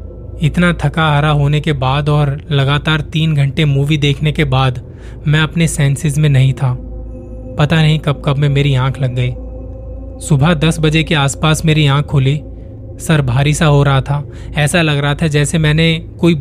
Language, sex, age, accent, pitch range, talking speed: Hindi, male, 20-39, native, 125-155 Hz, 185 wpm